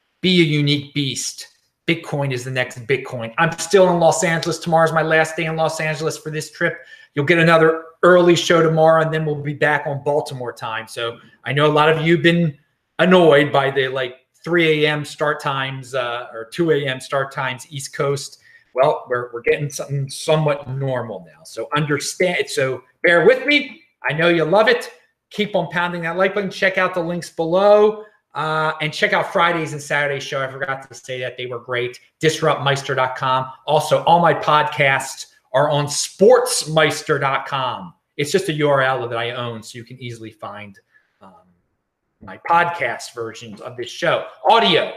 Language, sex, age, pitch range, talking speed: English, male, 30-49, 135-170 Hz, 180 wpm